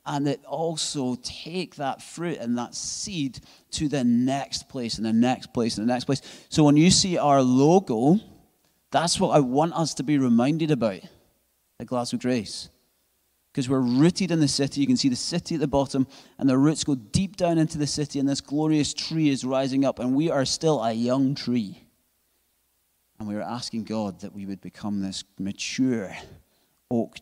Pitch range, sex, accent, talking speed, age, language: 105-145 Hz, male, British, 195 wpm, 30-49, English